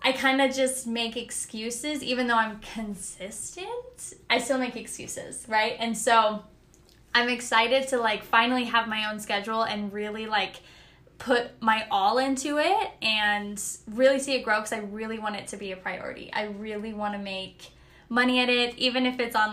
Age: 10-29